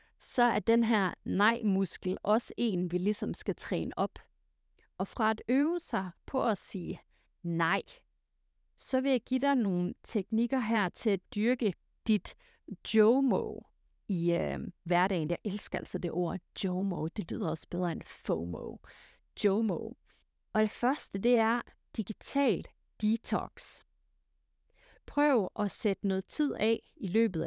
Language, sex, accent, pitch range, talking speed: Danish, female, native, 185-235 Hz, 140 wpm